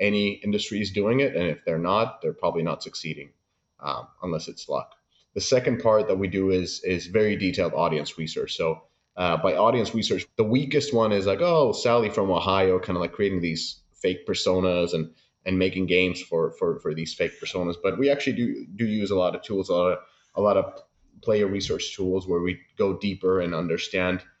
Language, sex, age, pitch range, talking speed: English, male, 30-49, 90-115 Hz, 210 wpm